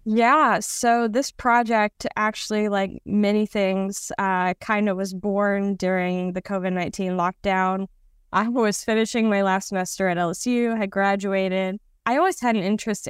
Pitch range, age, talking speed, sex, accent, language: 180-205 Hz, 20-39, 145 wpm, female, American, English